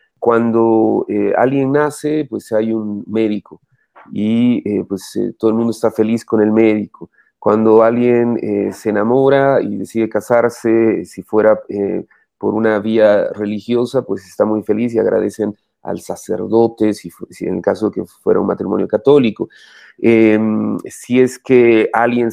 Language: Spanish